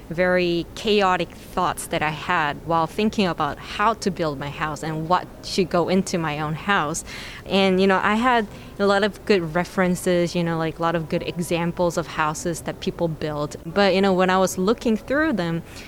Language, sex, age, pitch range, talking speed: English, female, 20-39, 165-195 Hz, 205 wpm